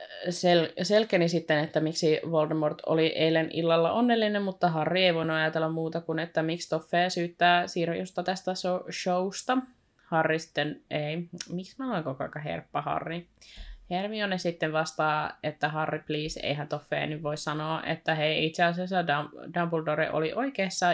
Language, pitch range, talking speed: Finnish, 150-175 Hz, 145 wpm